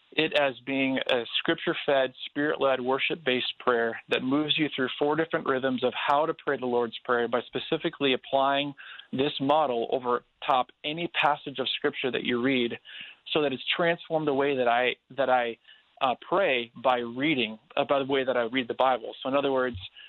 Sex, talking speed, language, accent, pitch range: male, 190 wpm, English, American, 120-145 Hz